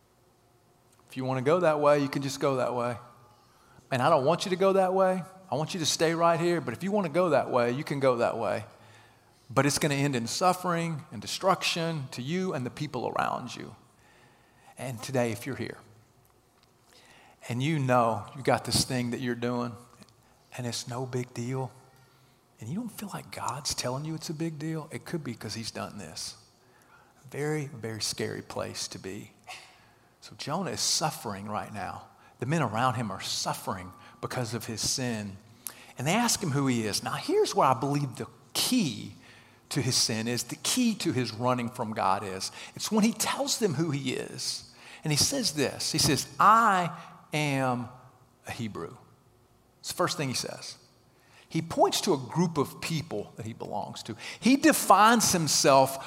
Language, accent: English, American